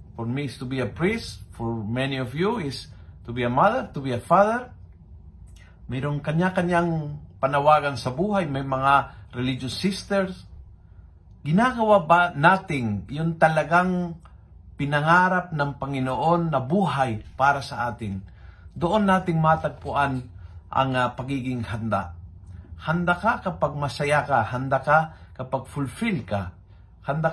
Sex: male